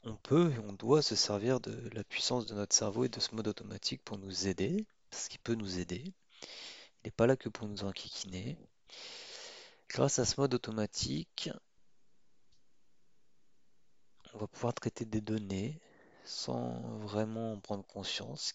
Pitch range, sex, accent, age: 105-130 Hz, male, French, 30-49